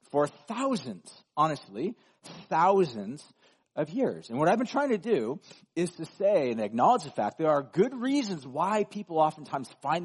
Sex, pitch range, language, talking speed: male, 125-185 Hz, English, 165 wpm